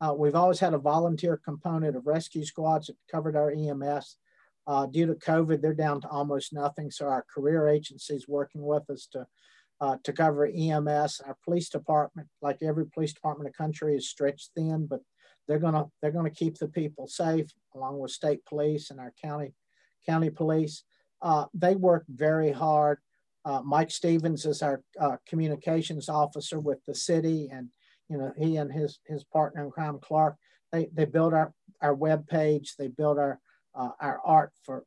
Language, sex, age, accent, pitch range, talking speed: English, male, 50-69, American, 145-165 Hz, 190 wpm